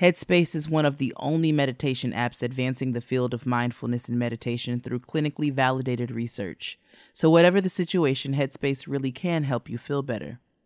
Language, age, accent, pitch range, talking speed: English, 30-49, American, 130-165 Hz, 170 wpm